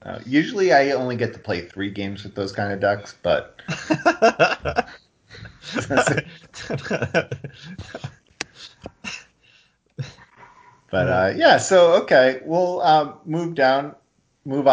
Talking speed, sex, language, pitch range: 100 wpm, male, English, 110-145 Hz